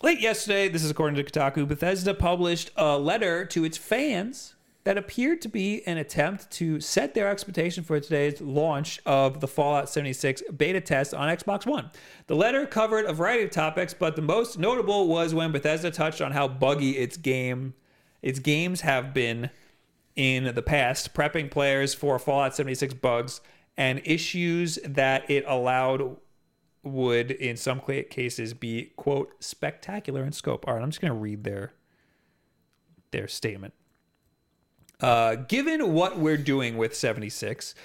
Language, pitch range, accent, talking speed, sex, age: English, 135-170 Hz, American, 160 wpm, male, 40-59